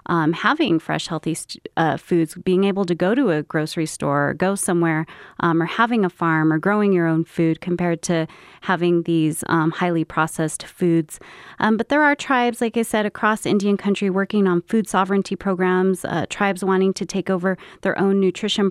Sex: female